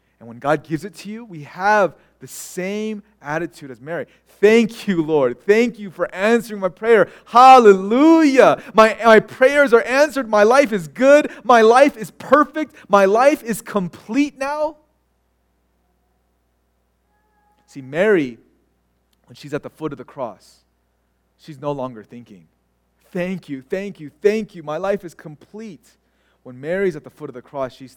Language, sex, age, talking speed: English, male, 30-49, 160 wpm